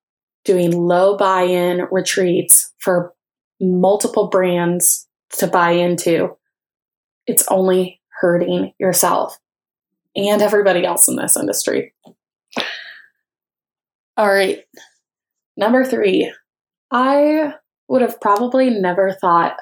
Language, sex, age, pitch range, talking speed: English, female, 20-39, 185-220 Hz, 90 wpm